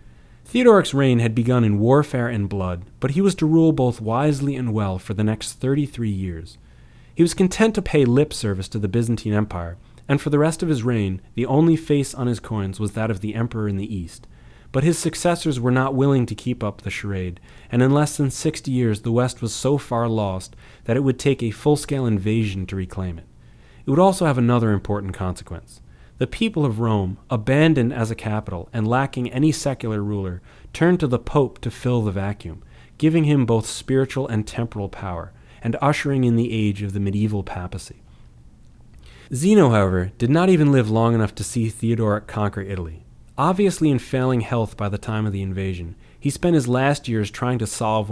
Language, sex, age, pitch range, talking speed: English, male, 30-49, 100-135 Hz, 200 wpm